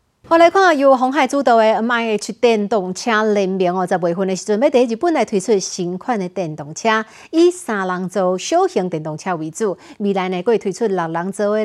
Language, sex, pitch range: Chinese, female, 190-250 Hz